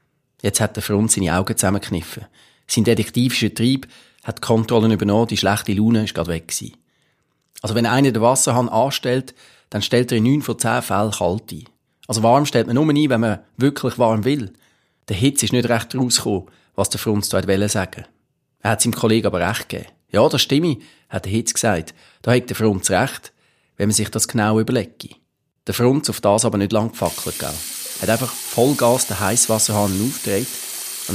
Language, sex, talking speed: German, male, 195 wpm